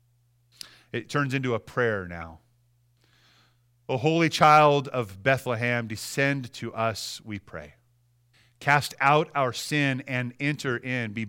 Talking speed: 130 wpm